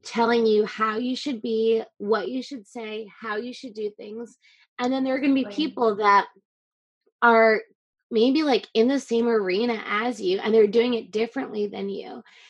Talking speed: 190 wpm